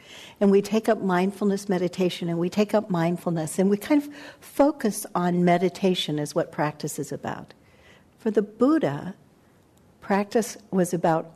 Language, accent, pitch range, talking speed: English, American, 170-210 Hz, 155 wpm